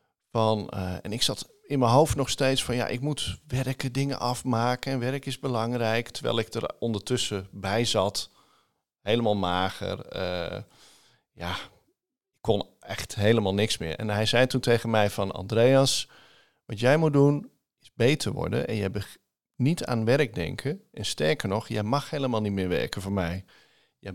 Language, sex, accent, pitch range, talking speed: Dutch, male, Dutch, 105-130 Hz, 175 wpm